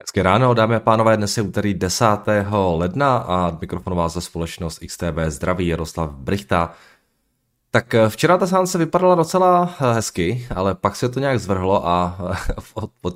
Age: 20-39